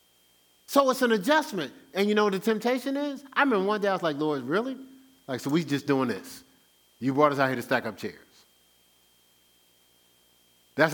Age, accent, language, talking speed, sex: 50-69, American, English, 205 wpm, male